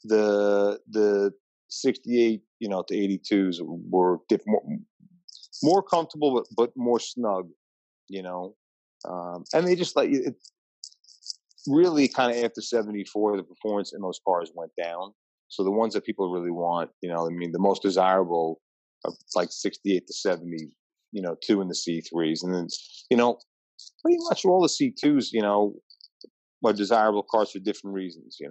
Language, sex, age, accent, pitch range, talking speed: English, male, 30-49, American, 90-115 Hz, 170 wpm